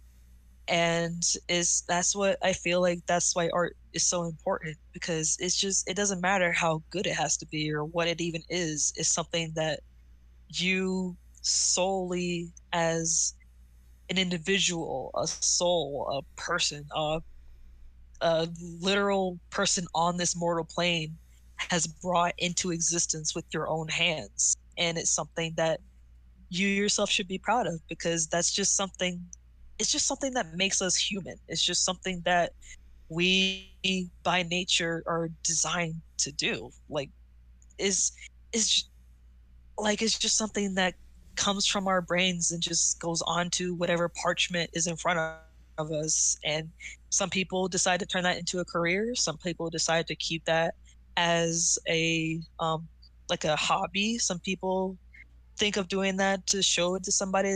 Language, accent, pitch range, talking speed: English, American, 160-185 Hz, 155 wpm